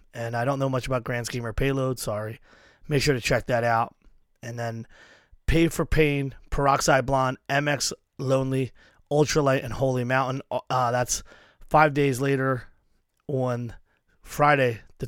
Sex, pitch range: male, 120-140 Hz